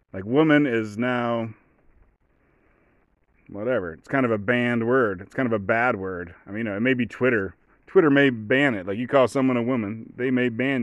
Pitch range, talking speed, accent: 105-130 Hz, 210 wpm, American